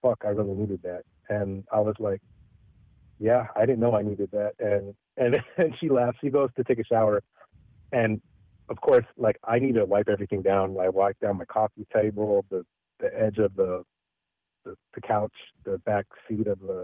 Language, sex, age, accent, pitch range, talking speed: English, male, 30-49, American, 105-130 Hz, 200 wpm